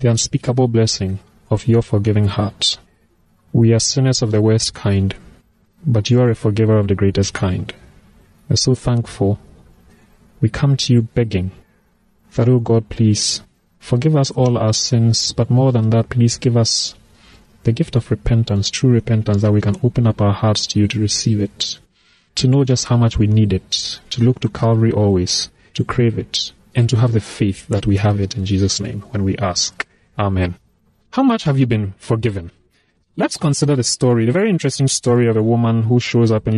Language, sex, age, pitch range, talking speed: English, male, 30-49, 100-125 Hz, 195 wpm